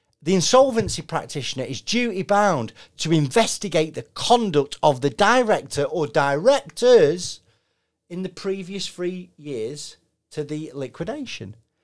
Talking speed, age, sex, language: 110 wpm, 40-59, male, English